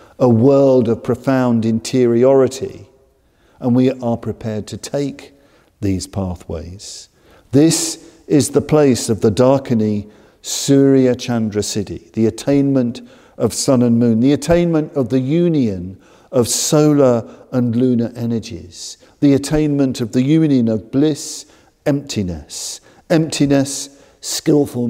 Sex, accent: male, British